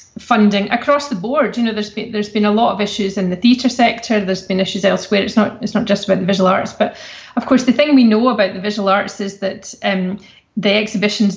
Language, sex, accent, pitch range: English, female, British, 195-230 Hz